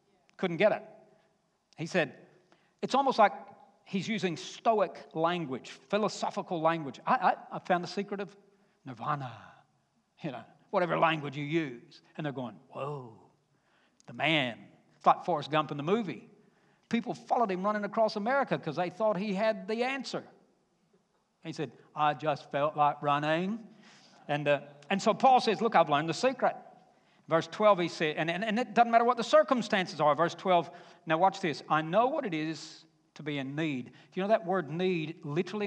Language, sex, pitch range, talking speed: English, male, 150-205 Hz, 180 wpm